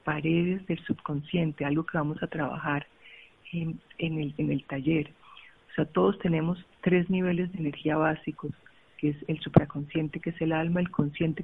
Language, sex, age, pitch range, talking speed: Spanish, female, 40-59, 150-175 Hz, 170 wpm